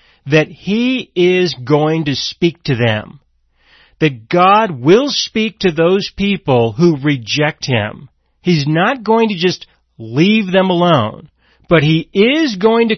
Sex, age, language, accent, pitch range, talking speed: male, 40-59, English, American, 135-205 Hz, 145 wpm